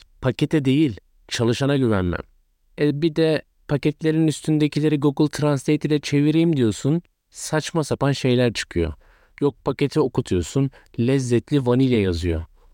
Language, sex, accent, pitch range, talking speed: Turkish, male, native, 115-155 Hz, 115 wpm